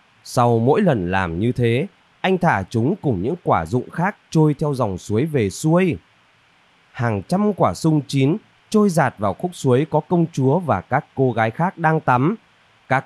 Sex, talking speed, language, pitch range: male, 190 wpm, Vietnamese, 115-170 Hz